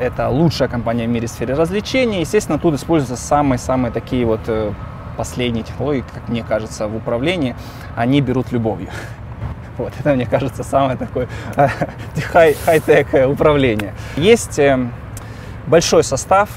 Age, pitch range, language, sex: 20-39, 110-135 Hz, Russian, male